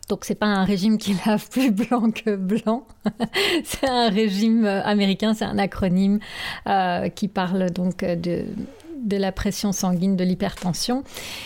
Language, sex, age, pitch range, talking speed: French, female, 30-49, 190-225 Hz, 150 wpm